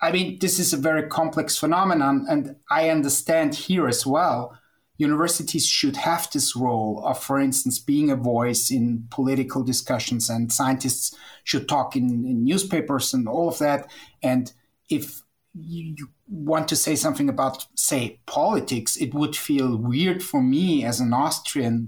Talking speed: 160 wpm